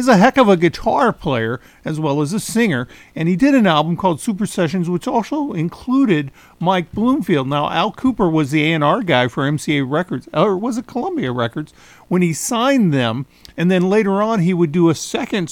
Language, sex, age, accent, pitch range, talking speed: English, male, 50-69, American, 150-195 Hz, 205 wpm